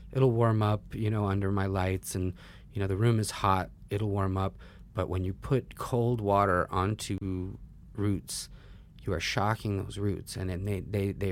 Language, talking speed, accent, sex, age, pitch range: English, 180 wpm, American, male, 30-49, 90-105 Hz